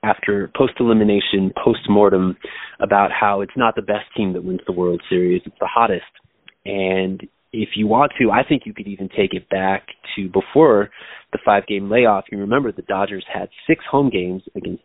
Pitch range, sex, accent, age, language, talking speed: 95-115 Hz, male, American, 30-49, English, 180 wpm